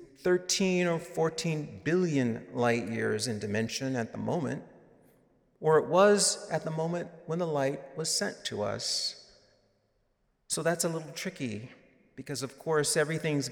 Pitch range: 120-155 Hz